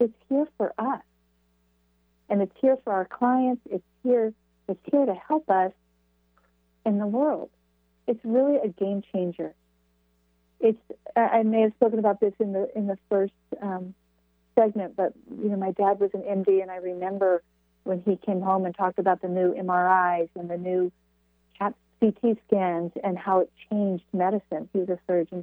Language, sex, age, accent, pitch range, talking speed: English, female, 40-59, American, 160-220 Hz, 175 wpm